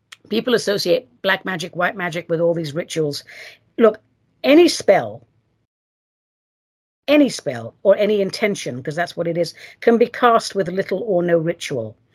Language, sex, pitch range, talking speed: English, female, 165-225 Hz, 155 wpm